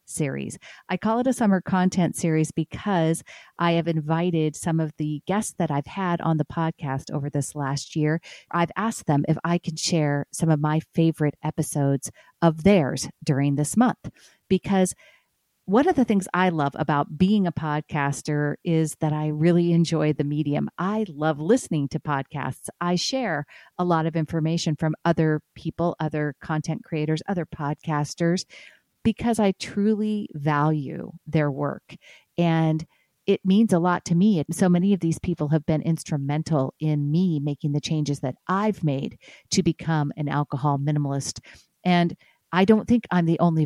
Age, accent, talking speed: 40-59, American, 170 wpm